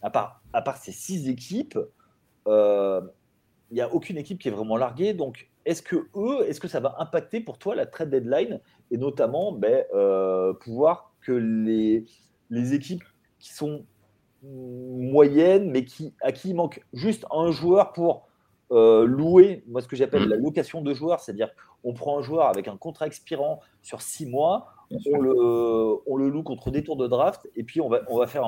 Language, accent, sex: French, French, male